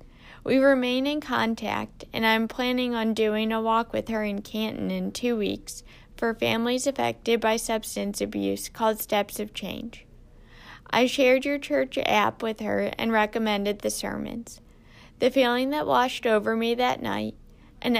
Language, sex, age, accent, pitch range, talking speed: English, female, 10-29, American, 185-245 Hz, 160 wpm